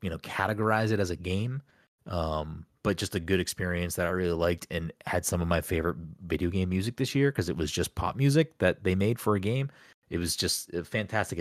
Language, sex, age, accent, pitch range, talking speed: English, male, 30-49, American, 85-100 Hz, 235 wpm